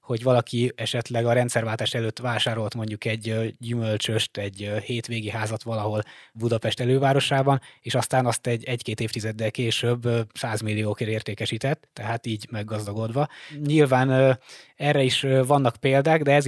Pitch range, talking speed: 110-130 Hz, 125 wpm